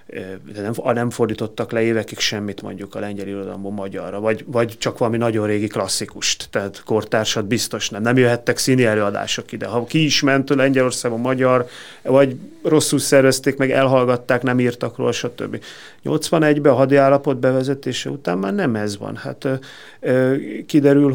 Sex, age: male, 30-49